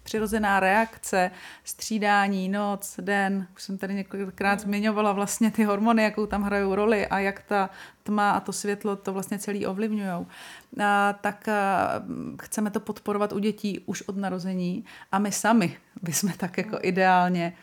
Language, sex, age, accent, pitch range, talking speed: Czech, female, 30-49, native, 195-230 Hz, 155 wpm